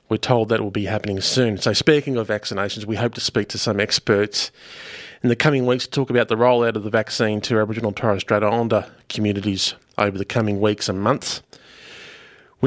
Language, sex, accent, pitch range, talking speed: English, male, Australian, 105-130 Hz, 210 wpm